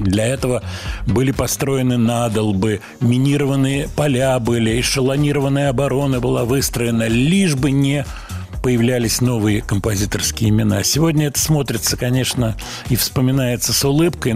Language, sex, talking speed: Russian, male, 115 wpm